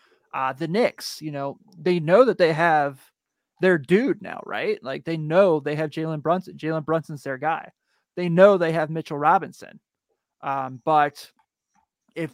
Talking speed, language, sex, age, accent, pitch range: 165 wpm, English, male, 30-49, American, 145-180 Hz